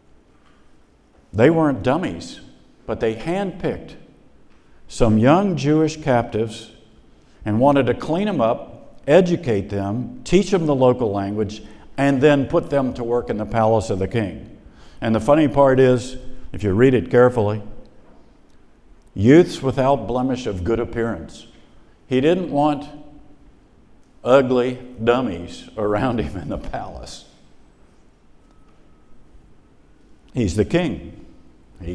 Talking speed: 120 wpm